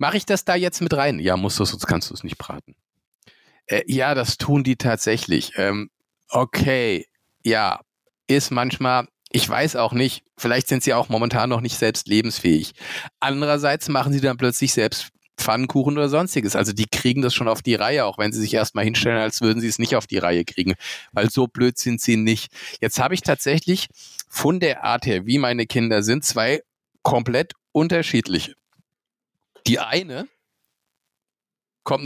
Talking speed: 180 wpm